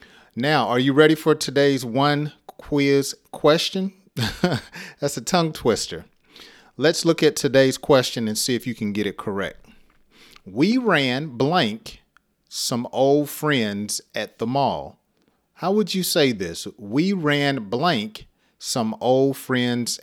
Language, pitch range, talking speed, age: English, 115-150 Hz, 140 wpm, 40-59